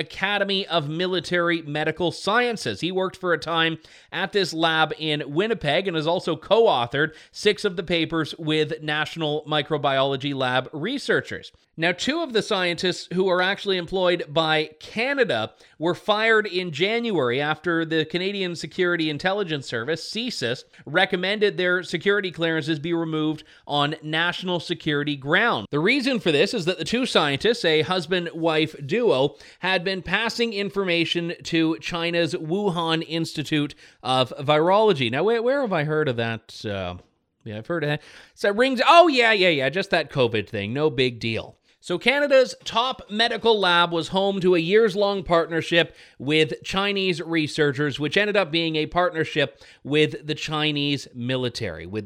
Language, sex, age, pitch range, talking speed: English, male, 30-49, 155-195 Hz, 150 wpm